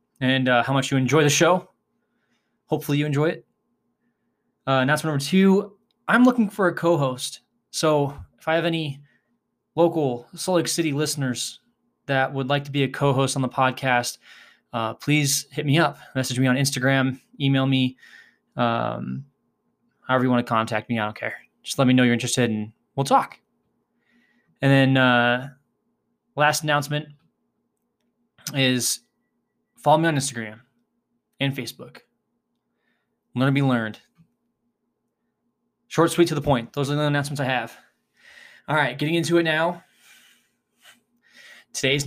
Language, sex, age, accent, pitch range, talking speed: English, male, 20-39, American, 130-155 Hz, 150 wpm